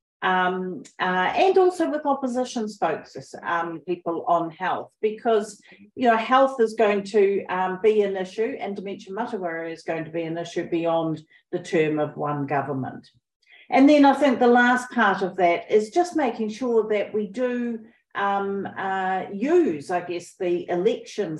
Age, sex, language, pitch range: 50-69, female, English, 185-225 Hz